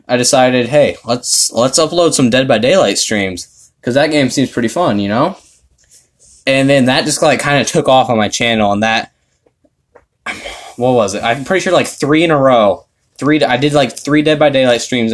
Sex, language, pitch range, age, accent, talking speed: male, English, 110-145 Hz, 10-29, American, 210 wpm